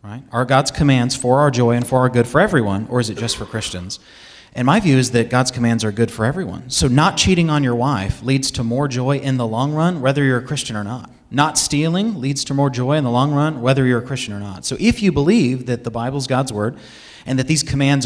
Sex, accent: male, American